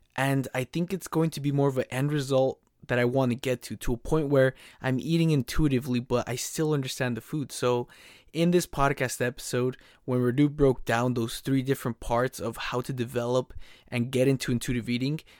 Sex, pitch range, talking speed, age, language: male, 120-140 Hz, 205 wpm, 20-39, English